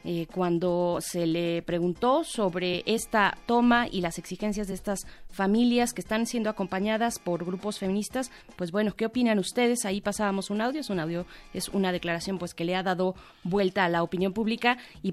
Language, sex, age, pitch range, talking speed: Spanish, female, 30-49, 185-230 Hz, 185 wpm